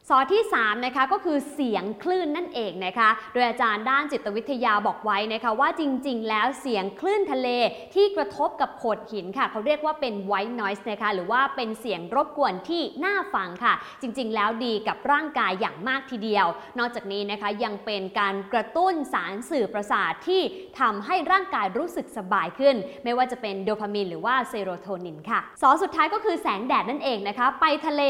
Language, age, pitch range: English, 20-39, 210-290 Hz